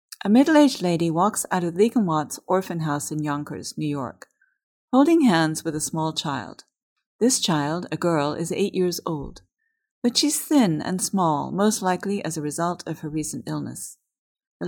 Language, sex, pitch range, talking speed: English, female, 155-210 Hz, 170 wpm